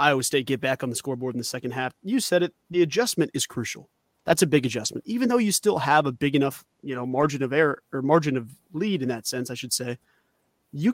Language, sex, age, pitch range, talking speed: English, male, 30-49, 135-170 Hz, 250 wpm